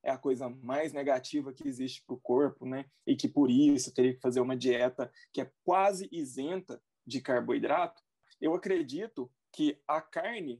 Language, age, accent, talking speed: Portuguese, 20-39, Brazilian, 175 wpm